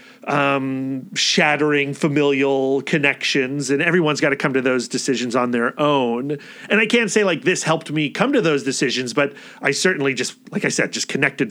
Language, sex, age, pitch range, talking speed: English, male, 30-49, 140-195 Hz, 190 wpm